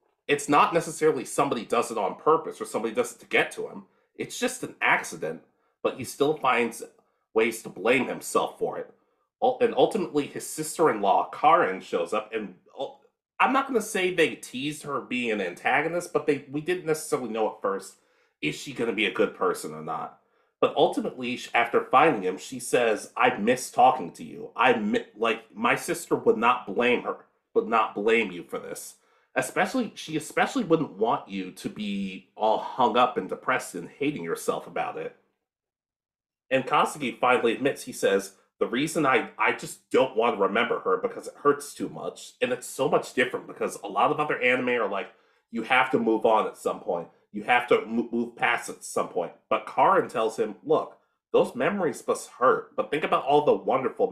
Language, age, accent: English, 30-49, American